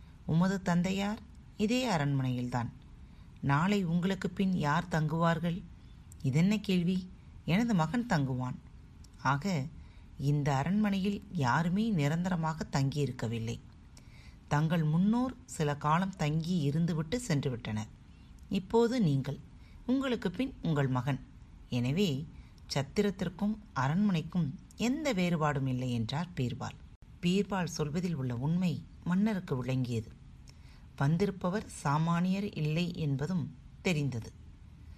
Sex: female